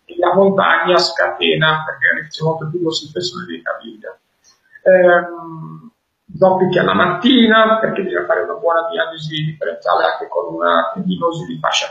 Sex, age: male, 50-69